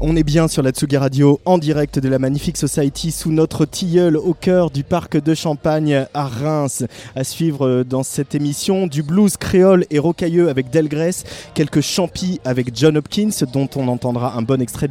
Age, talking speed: 30-49, 190 wpm